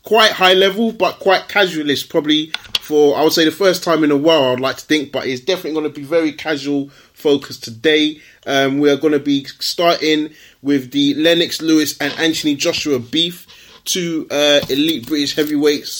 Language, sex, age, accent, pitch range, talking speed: English, male, 30-49, British, 140-165 Hz, 190 wpm